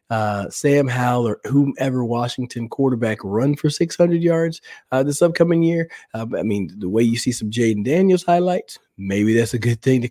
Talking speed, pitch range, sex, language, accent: 190 wpm, 110-140 Hz, male, English, American